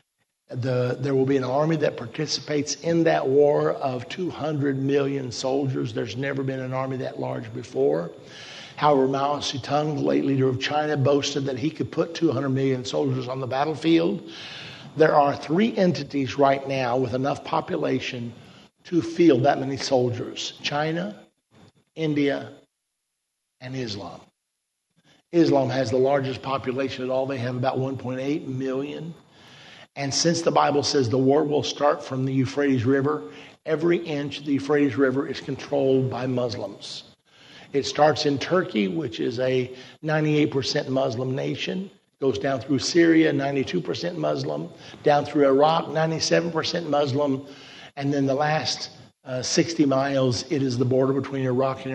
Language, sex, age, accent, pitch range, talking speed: English, male, 50-69, American, 130-150 Hz, 150 wpm